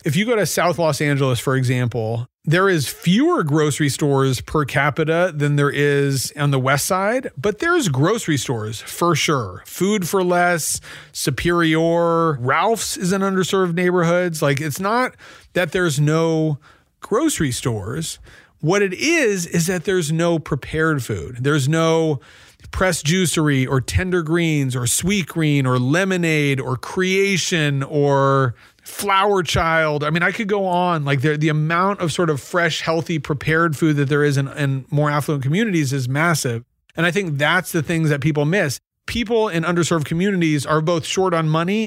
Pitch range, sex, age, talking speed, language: 140-175 Hz, male, 40-59, 170 wpm, English